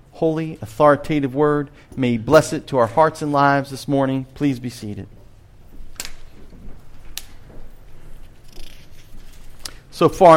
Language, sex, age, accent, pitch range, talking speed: English, male, 40-59, American, 120-175 Hz, 105 wpm